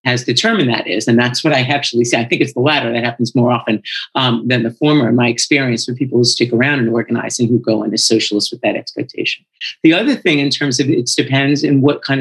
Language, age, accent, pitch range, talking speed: English, 50-69, American, 125-155 Hz, 260 wpm